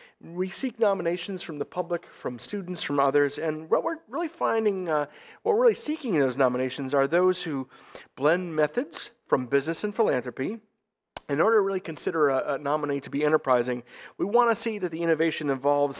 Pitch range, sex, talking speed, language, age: 140-190 Hz, male, 190 wpm, English, 40-59